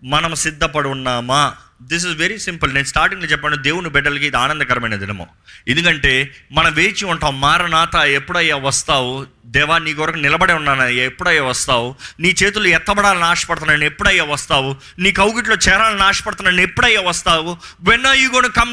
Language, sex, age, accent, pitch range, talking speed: Telugu, male, 30-49, native, 140-210 Hz, 145 wpm